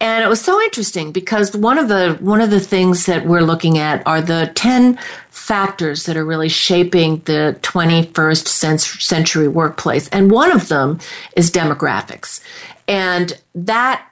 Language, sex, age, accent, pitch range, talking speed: English, female, 50-69, American, 160-220 Hz, 155 wpm